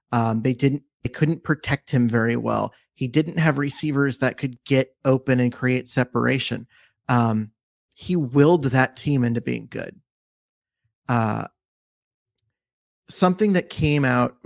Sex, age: male, 30-49